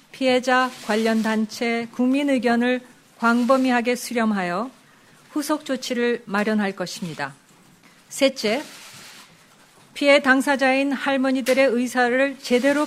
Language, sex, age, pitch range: Korean, female, 40-59, 225-265 Hz